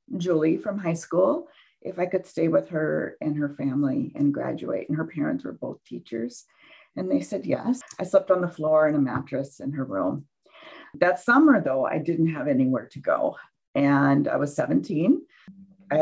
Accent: American